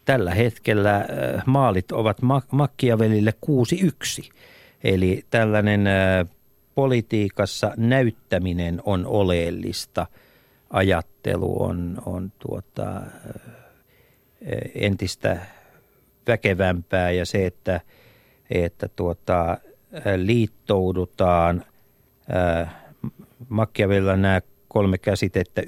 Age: 50-69